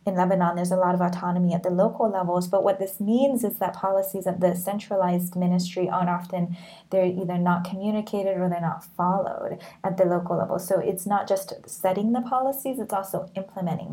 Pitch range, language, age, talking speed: 180-205 Hz, English, 20-39, 200 wpm